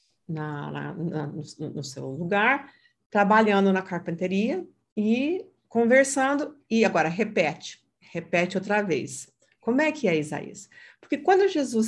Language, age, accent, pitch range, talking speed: Portuguese, 50-69, Brazilian, 155-230 Hz, 130 wpm